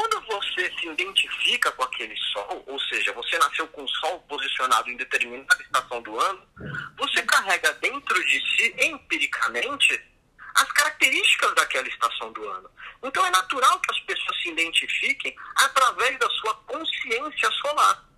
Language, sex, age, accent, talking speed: Portuguese, male, 40-59, Brazilian, 150 wpm